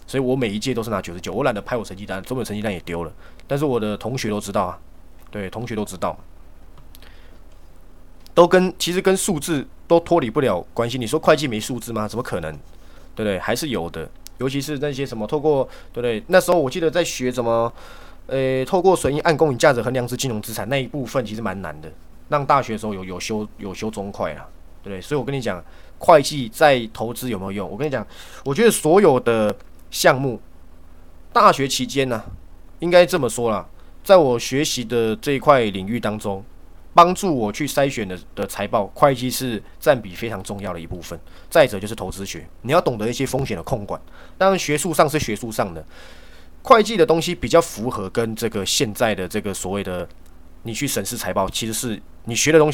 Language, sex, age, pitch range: Chinese, male, 20-39, 90-140 Hz